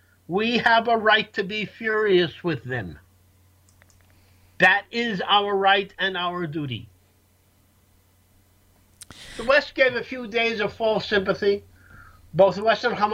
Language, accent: English, American